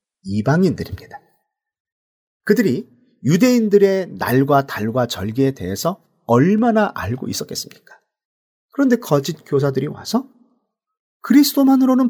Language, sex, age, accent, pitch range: Korean, male, 40-59, native, 175-255 Hz